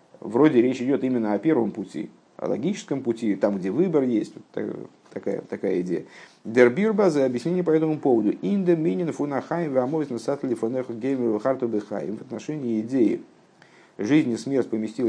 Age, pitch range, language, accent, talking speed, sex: 50-69, 115-155 Hz, Russian, native, 140 wpm, male